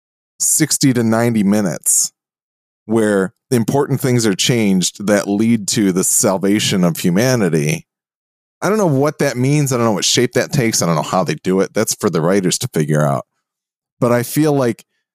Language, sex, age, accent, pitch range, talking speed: English, male, 30-49, American, 90-130 Hz, 185 wpm